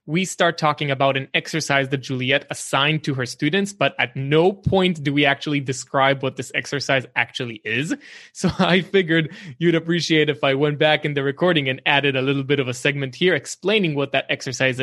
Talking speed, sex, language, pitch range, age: 200 wpm, male, English, 135-170 Hz, 20-39